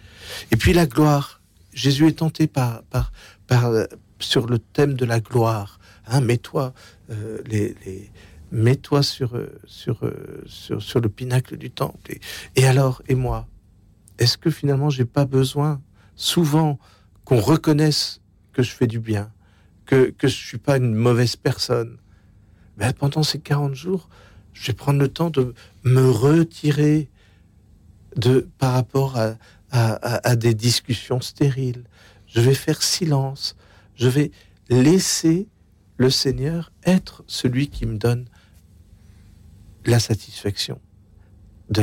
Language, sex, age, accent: French, male, 60-79, French